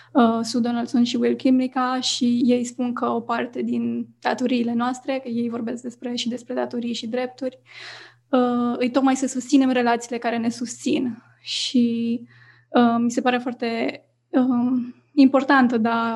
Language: Romanian